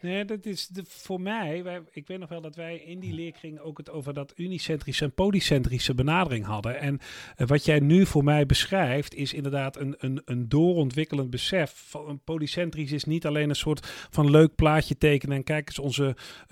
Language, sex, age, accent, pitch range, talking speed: Dutch, male, 40-59, Dutch, 130-165 Hz, 190 wpm